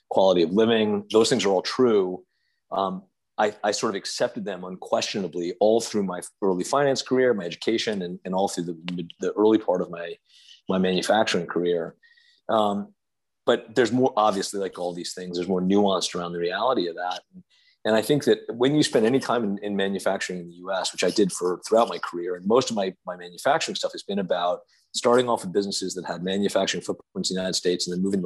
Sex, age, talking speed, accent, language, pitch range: male, 40-59, 215 wpm, American, English, 90-105 Hz